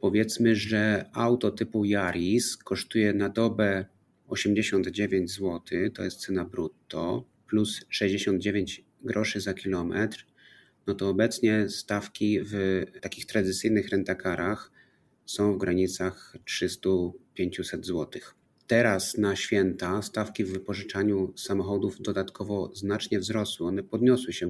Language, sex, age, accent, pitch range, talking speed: Polish, male, 30-49, native, 95-110 Hz, 110 wpm